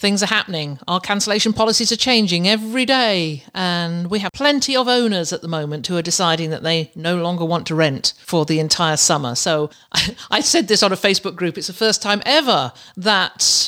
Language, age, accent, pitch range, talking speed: English, 50-69, British, 175-220 Hz, 205 wpm